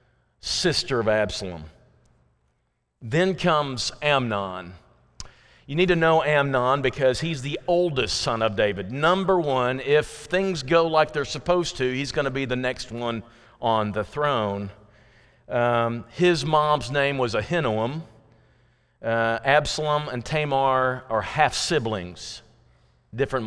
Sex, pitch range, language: male, 110-145 Hz, English